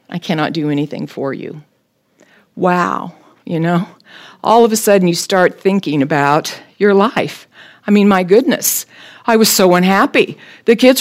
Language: English